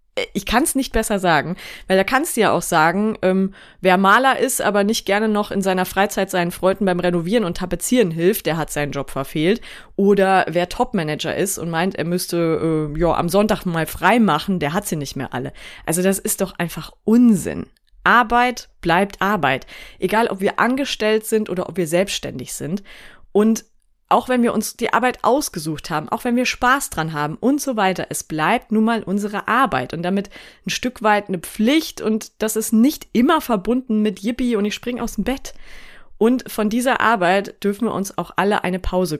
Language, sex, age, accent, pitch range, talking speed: German, female, 30-49, German, 175-225 Hz, 200 wpm